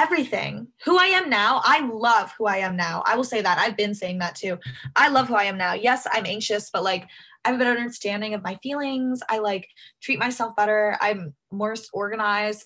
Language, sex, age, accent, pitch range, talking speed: English, female, 10-29, American, 195-250 Hz, 225 wpm